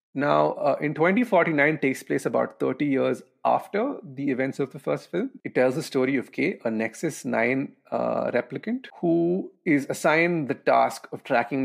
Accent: Indian